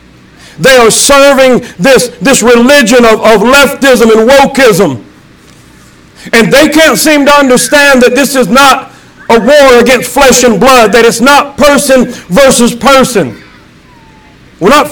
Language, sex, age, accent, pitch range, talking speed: English, male, 50-69, American, 220-275 Hz, 140 wpm